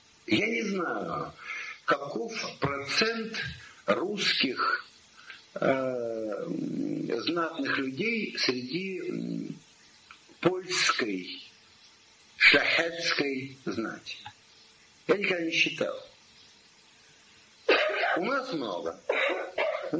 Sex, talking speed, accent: male, 65 wpm, native